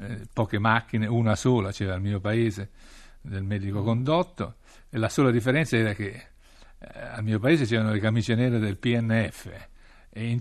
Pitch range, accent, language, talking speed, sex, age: 100-120 Hz, native, Italian, 165 wpm, male, 60-79